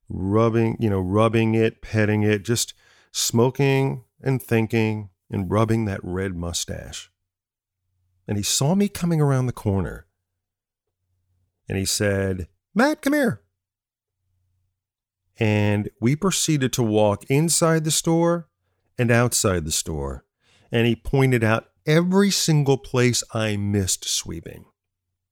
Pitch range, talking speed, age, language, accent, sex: 95-130 Hz, 125 wpm, 40-59, English, American, male